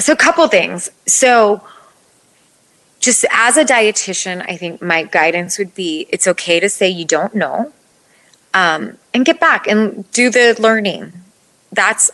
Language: English